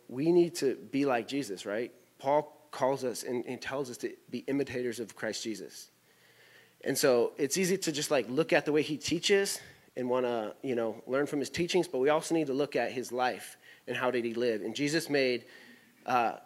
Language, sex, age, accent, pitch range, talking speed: English, male, 30-49, American, 125-160 Hz, 220 wpm